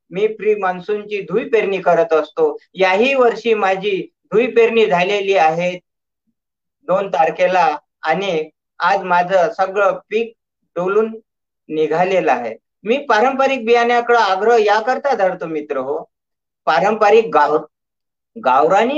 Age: 50-69